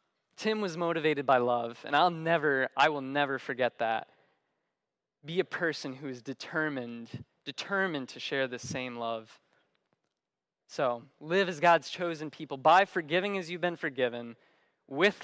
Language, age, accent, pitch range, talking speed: English, 20-39, American, 130-180 Hz, 150 wpm